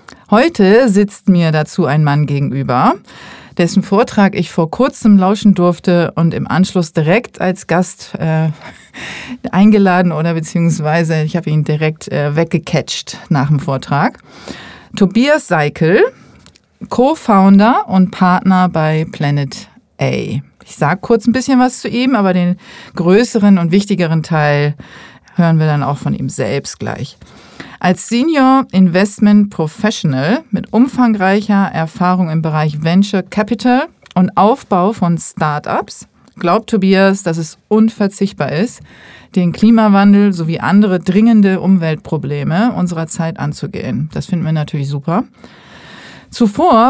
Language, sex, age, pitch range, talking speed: German, female, 40-59, 165-210 Hz, 125 wpm